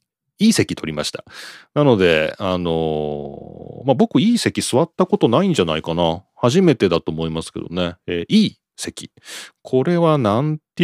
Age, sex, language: 40-59, male, Japanese